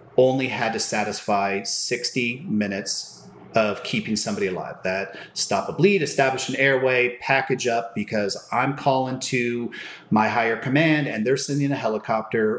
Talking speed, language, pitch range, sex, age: 150 wpm, English, 105-135 Hz, male, 30-49